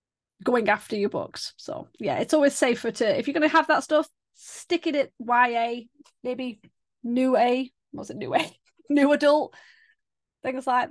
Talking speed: 175 wpm